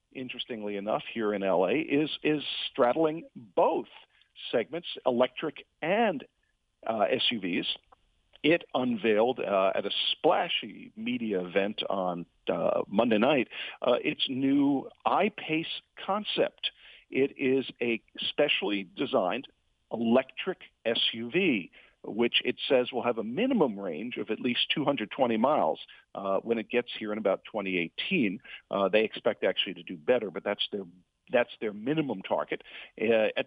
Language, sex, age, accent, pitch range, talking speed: English, male, 50-69, American, 115-170 Hz, 135 wpm